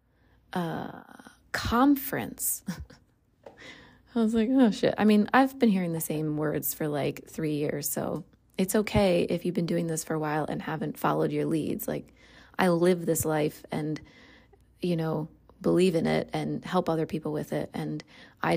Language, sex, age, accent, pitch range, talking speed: English, female, 30-49, American, 160-215 Hz, 175 wpm